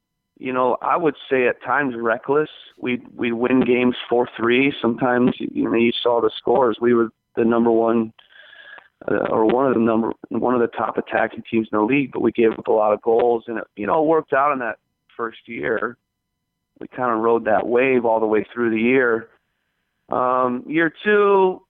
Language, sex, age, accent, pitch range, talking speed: English, male, 30-49, American, 115-140 Hz, 205 wpm